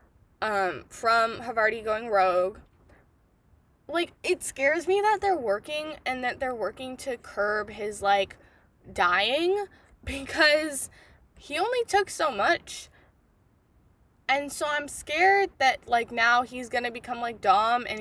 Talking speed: 135 wpm